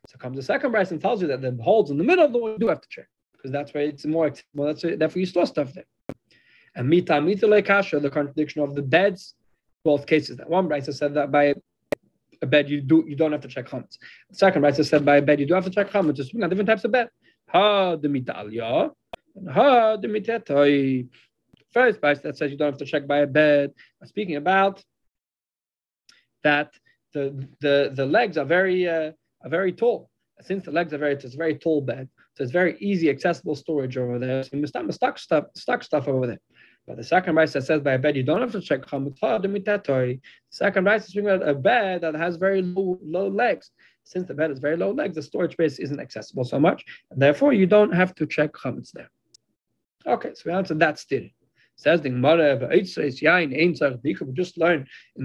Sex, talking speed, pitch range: male, 210 wpm, 145-185 Hz